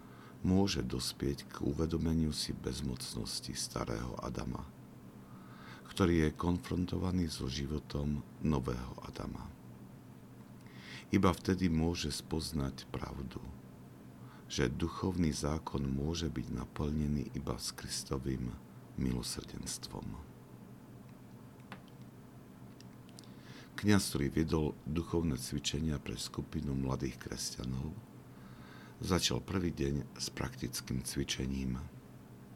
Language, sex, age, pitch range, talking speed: Slovak, male, 50-69, 65-80 Hz, 85 wpm